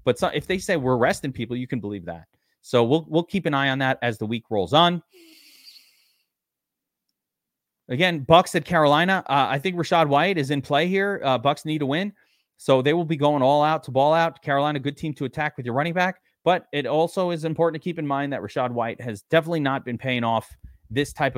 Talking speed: 225 wpm